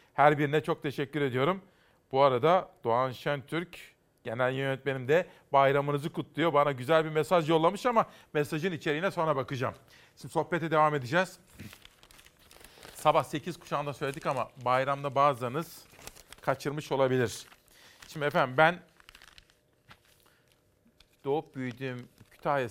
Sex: male